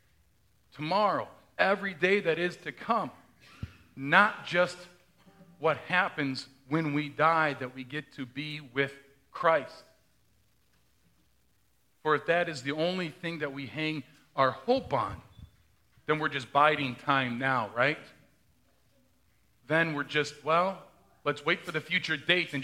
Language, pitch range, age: English, 130-175 Hz, 40-59